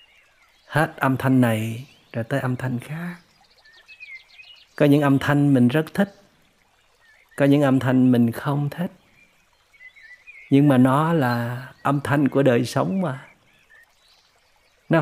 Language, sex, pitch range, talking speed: Vietnamese, male, 120-165 Hz, 130 wpm